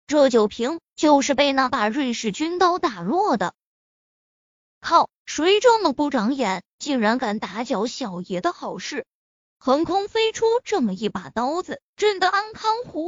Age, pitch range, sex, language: 20-39, 250-340 Hz, female, Chinese